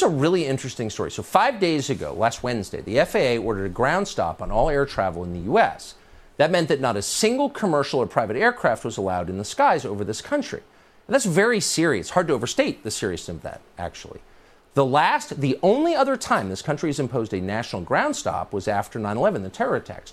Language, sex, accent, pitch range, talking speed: English, male, American, 105-180 Hz, 215 wpm